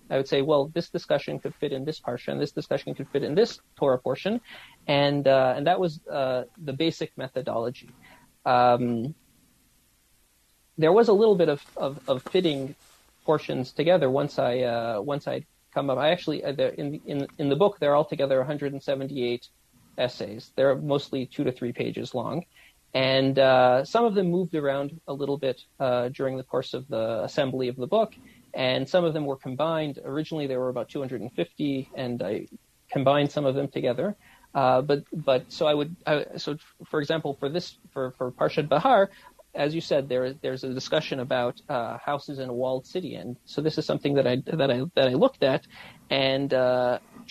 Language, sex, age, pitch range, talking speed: English, male, 40-59, 130-165 Hz, 200 wpm